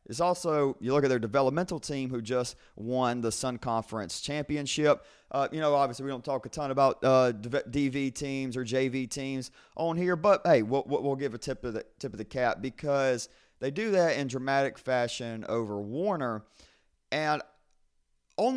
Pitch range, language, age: 105-140 Hz, English, 30-49